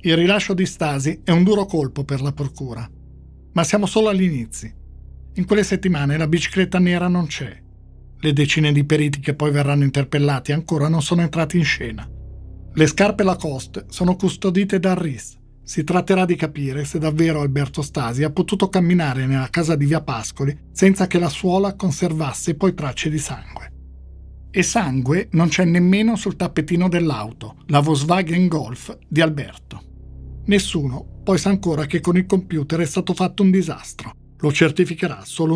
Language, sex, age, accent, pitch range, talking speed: Italian, male, 50-69, native, 135-180 Hz, 165 wpm